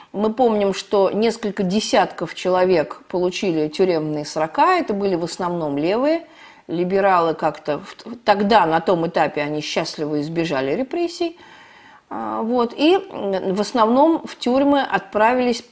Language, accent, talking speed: Russian, native, 125 wpm